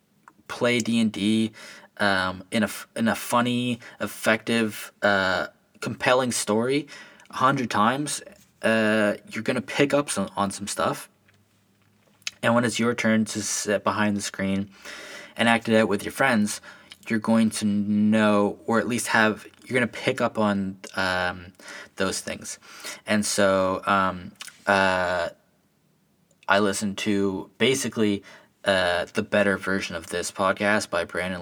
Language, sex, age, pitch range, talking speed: English, male, 20-39, 95-115 Hz, 145 wpm